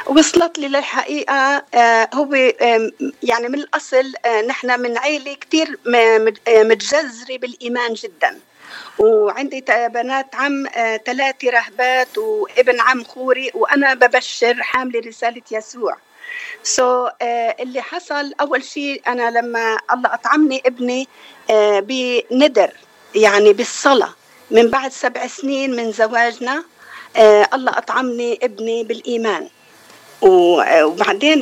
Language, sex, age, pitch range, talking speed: Arabic, female, 50-69, 230-275 Hz, 95 wpm